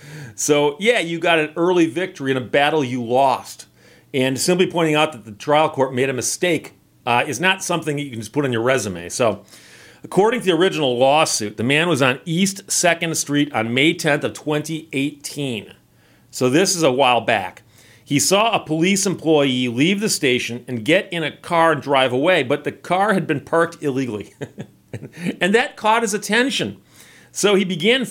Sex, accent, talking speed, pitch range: male, American, 190 wpm, 130-175 Hz